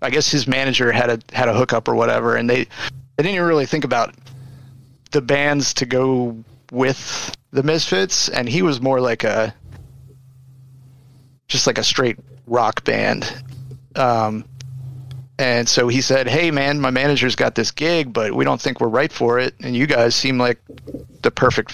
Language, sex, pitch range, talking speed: English, male, 120-145 Hz, 180 wpm